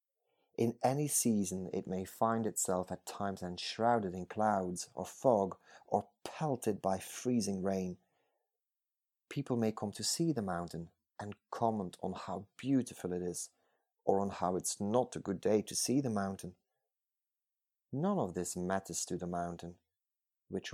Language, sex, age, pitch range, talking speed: English, male, 30-49, 95-115 Hz, 155 wpm